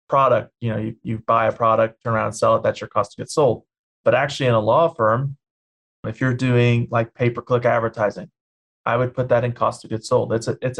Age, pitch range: 30-49, 110-125 Hz